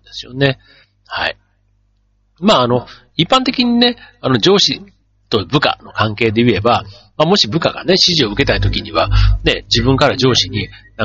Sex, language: male, Japanese